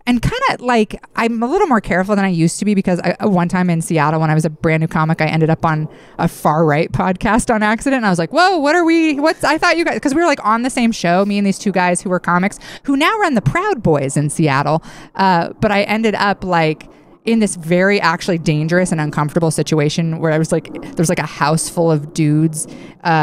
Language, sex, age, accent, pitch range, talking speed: English, female, 20-39, American, 165-220 Hz, 255 wpm